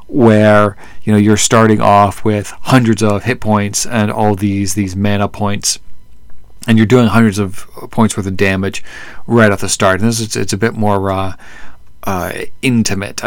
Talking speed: 180 wpm